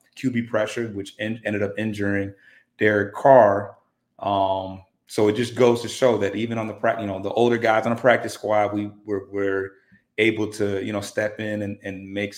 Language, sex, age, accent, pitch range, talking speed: English, male, 30-49, American, 100-115 Hz, 205 wpm